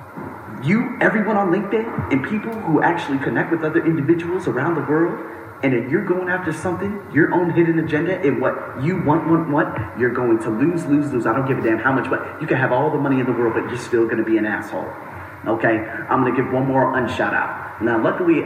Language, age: English, 30-49